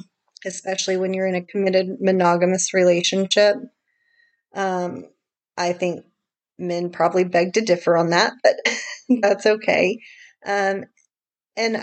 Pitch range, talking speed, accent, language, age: 175-205 Hz, 115 wpm, American, English, 30-49